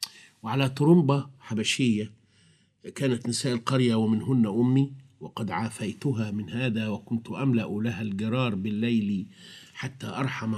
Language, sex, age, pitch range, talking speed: Arabic, male, 50-69, 105-135 Hz, 110 wpm